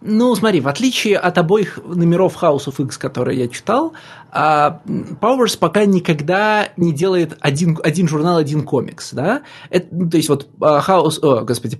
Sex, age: male, 20-39